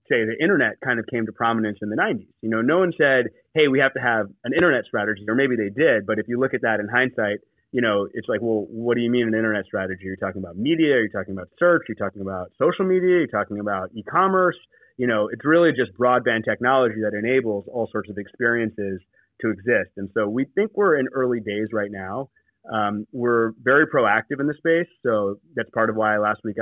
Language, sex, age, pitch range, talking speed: English, male, 30-49, 105-130 Hz, 235 wpm